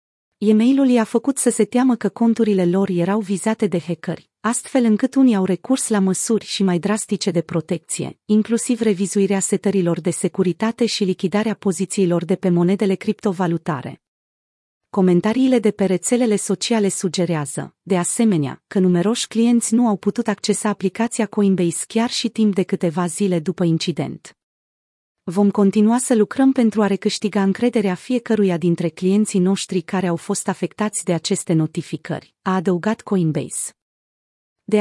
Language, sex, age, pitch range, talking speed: Romanian, female, 30-49, 180-220 Hz, 145 wpm